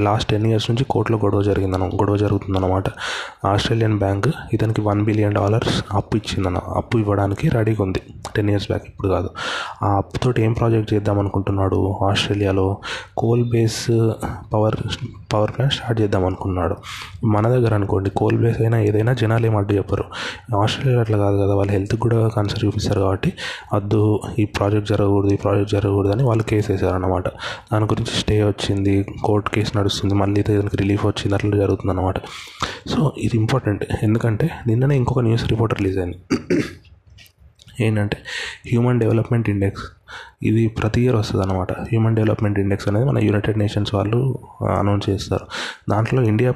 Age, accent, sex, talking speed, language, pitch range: 20-39, native, male, 145 wpm, Telugu, 100-115 Hz